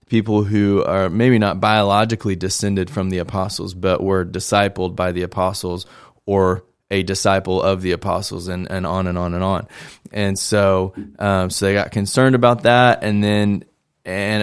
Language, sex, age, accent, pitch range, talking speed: English, male, 20-39, American, 95-110 Hz, 170 wpm